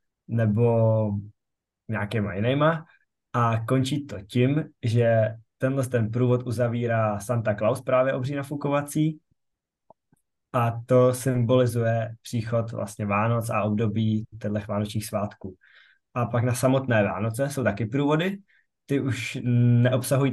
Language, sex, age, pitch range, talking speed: Czech, male, 20-39, 115-130 Hz, 120 wpm